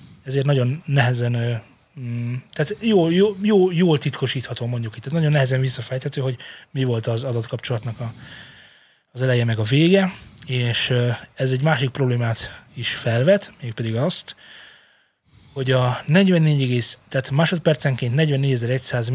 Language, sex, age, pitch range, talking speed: Hungarian, male, 20-39, 120-150 Hz, 115 wpm